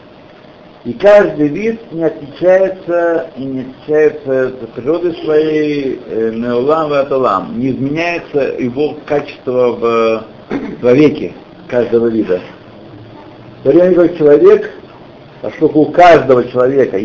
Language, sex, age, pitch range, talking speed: Russian, male, 60-79, 125-160 Hz, 95 wpm